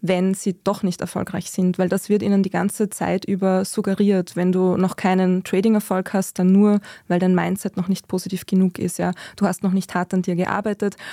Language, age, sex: German, 20-39, female